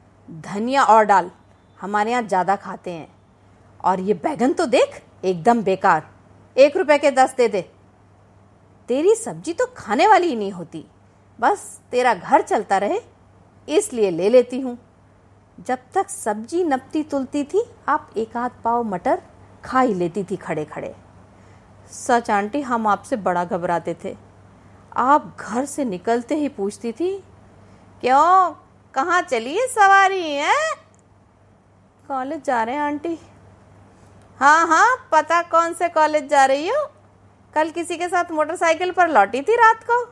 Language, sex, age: Hindi, female, 50-69